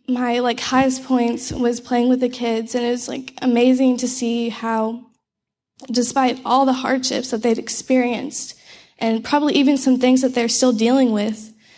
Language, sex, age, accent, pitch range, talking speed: English, female, 10-29, American, 225-255 Hz, 175 wpm